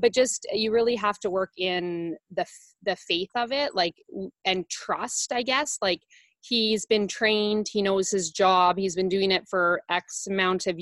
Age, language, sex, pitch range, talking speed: 20-39, English, female, 175-205 Hz, 190 wpm